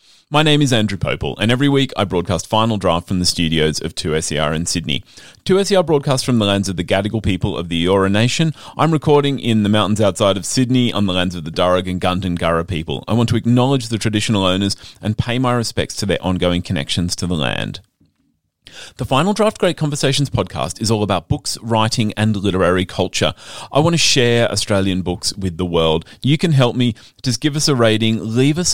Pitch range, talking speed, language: 90-135 Hz, 210 wpm, English